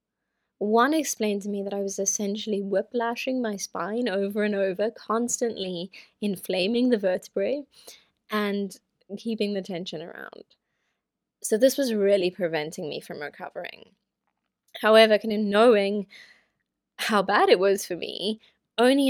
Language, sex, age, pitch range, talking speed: English, female, 20-39, 185-225 Hz, 130 wpm